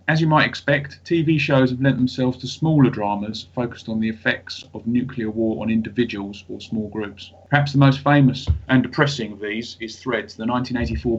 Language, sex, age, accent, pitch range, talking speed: English, male, 30-49, British, 110-130 Hz, 195 wpm